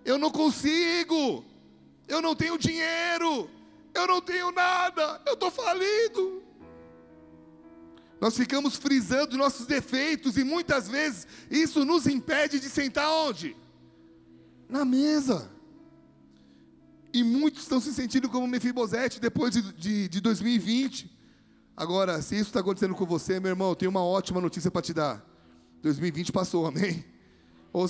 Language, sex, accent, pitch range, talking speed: Portuguese, male, Brazilian, 185-280 Hz, 135 wpm